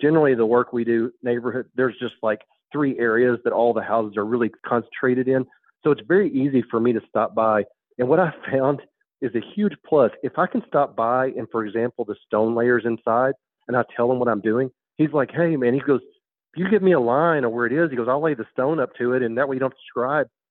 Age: 40-59